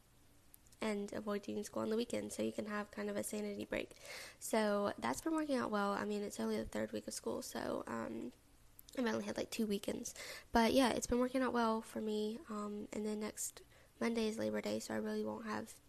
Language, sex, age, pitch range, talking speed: English, female, 10-29, 200-230 Hz, 225 wpm